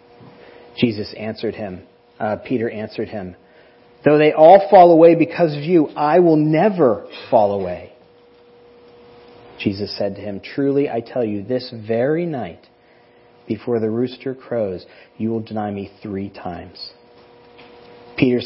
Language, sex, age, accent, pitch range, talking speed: English, male, 40-59, American, 115-145 Hz, 135 wpm